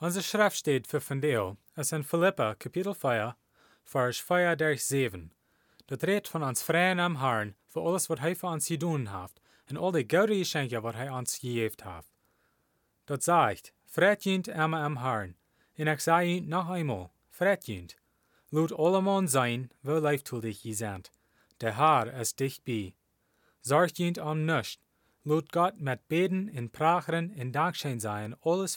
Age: 30-49